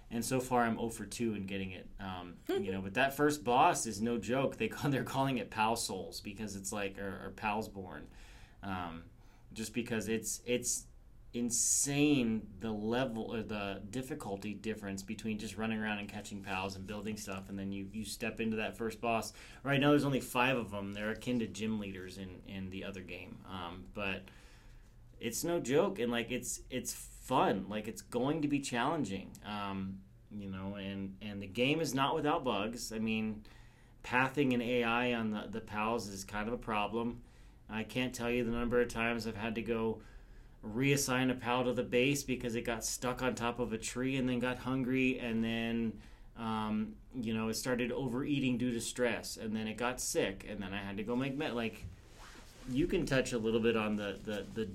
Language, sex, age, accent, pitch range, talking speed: English, male, 30-49, American, 105-125 Hz, 205 wpm